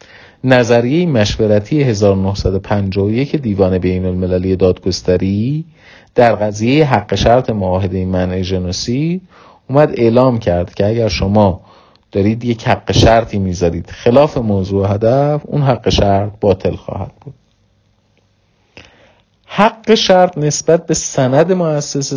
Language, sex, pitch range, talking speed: Persian, male, 100-130 Hz, 105 wpm